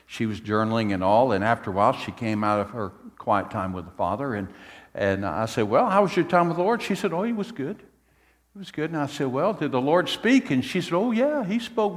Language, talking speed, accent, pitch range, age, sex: English, 275 wpm, American, 100-130 Hz, 60-79, male